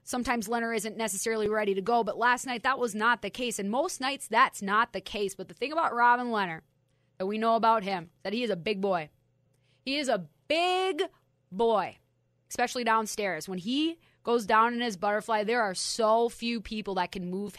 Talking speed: 210 wpm